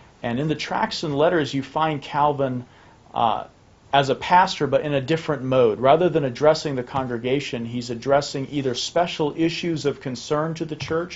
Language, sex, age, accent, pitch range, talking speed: English, male, 40-59, American, 115-145 Hz, 175 wpm